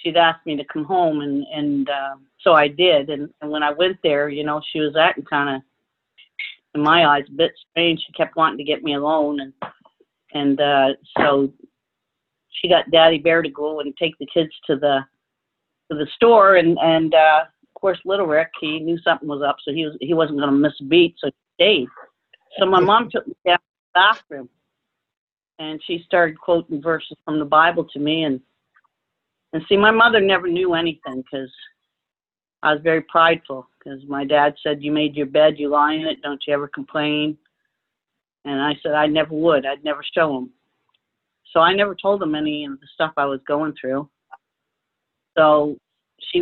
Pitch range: 145-170 Hz